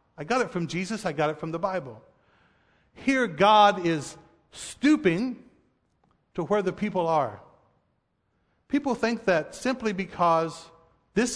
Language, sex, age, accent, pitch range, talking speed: English, male, 50-69, American, 165-215 Hz, 135 wpm